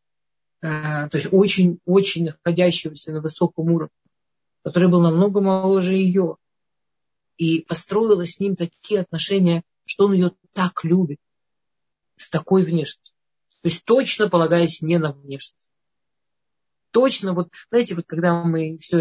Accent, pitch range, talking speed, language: native, 165-190 Hz, 125 wpm, Russian